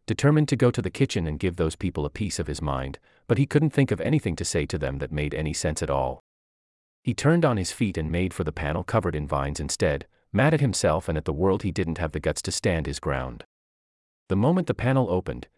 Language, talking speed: English, 255 wpm